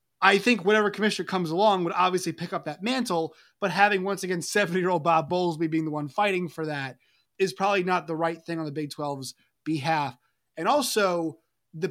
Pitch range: 160-195 Hz